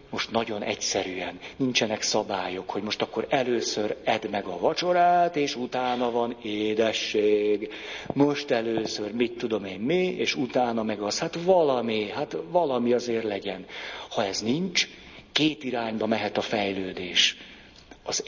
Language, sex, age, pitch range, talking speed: Hungarian, male, 50-69, 110-140 Hz, 140 wpm